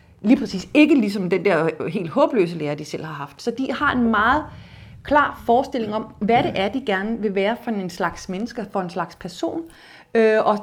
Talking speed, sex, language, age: 210 wpm, female, Danish, 30-49